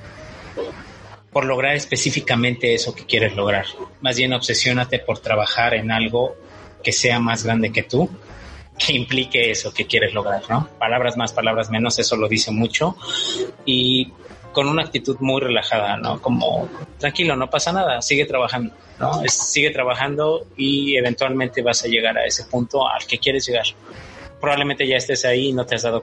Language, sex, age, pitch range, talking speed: Spanish, male, 30-49, 115-135 Hz, 170 wpm